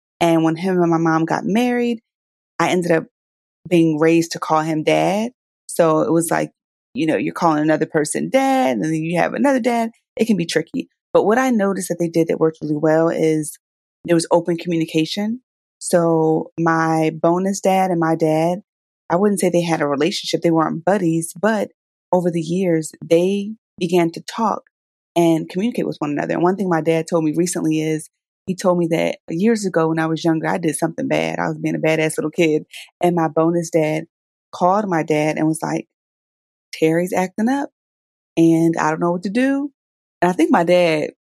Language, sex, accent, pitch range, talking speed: English, female, American, 160-185 Hz, 200 wpm